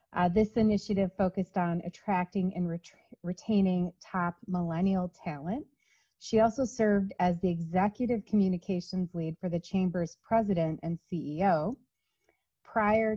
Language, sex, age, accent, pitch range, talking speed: English, female, 30-49, American, 175-210 Hz, 125 wpm